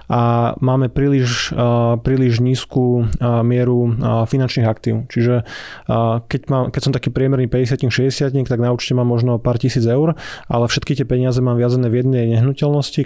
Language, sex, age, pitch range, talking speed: Slovak, male, 20-39, 120-135 Hz, 170 wpm